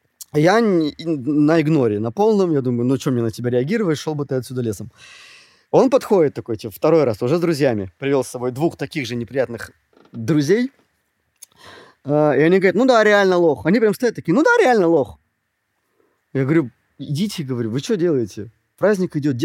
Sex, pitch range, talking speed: male, 115-165 Hz, 180 wpm